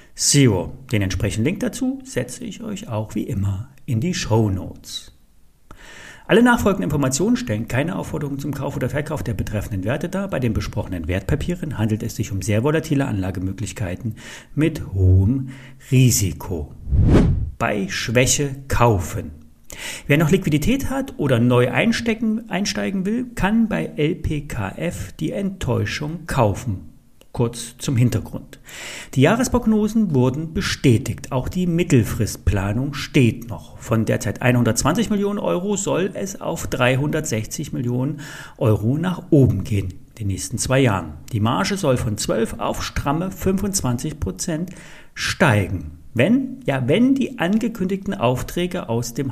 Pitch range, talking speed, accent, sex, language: 105-170 Hz, 130 wpm, German, male, German